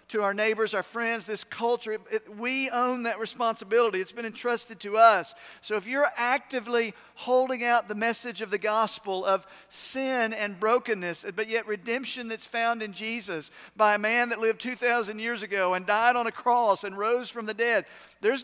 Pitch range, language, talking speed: 195-240 Hz, English, 185 wpm